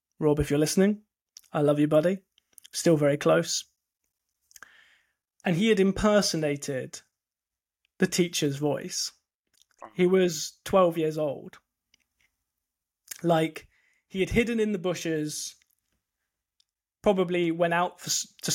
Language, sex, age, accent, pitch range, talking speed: English, male, 20-39, British, 155-180 Hz, 110 wpm